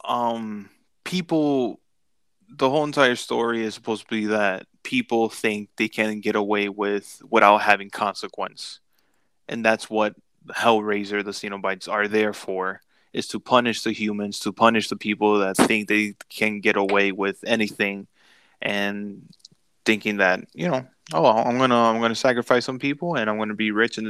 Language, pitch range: English, 105-125 Hz